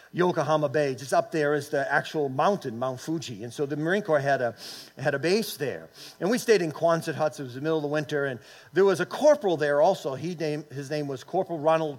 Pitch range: 145-180 Hz